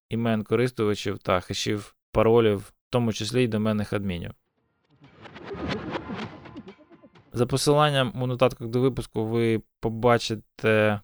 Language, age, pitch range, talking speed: Ukrainian, 20-39, 100-115 Hz, 105 wpm